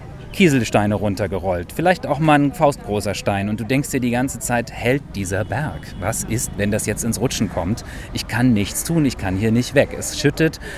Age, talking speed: 30-49, 205 wpm